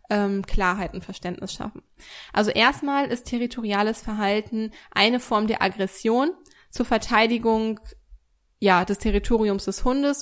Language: German